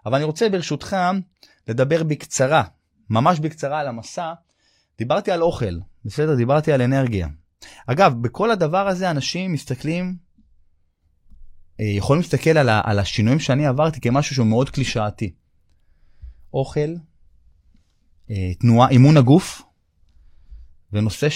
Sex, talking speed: male, 110 wpm